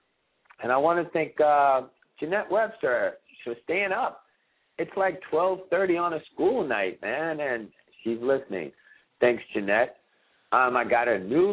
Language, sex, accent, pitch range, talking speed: English, male, American, 115-185 Hz, 150 wpm